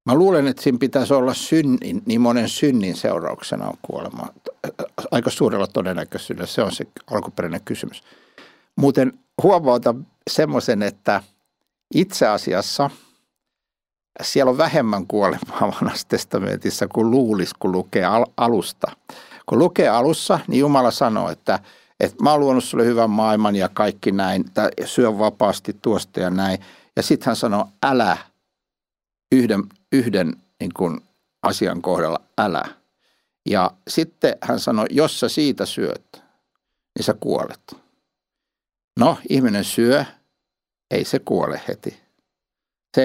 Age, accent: 60-79, native